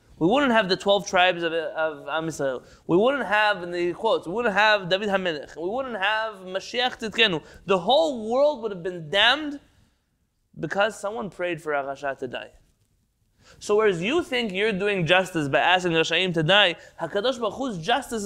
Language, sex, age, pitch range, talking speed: English, male, 20-39, 160-220 Hz, 185 wpm